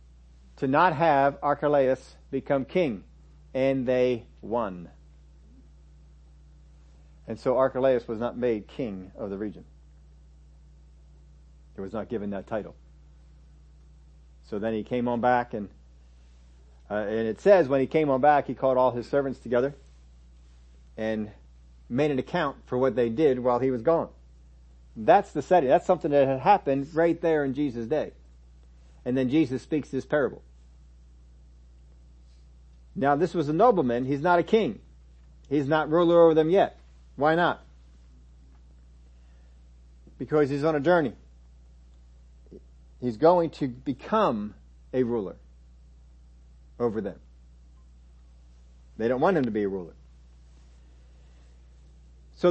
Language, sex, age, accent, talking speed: English, male, 50-69, American, 135 wpm